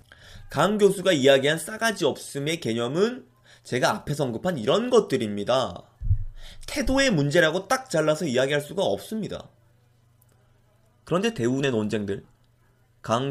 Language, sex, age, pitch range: Korean, male, 20-39, 115-160 Hz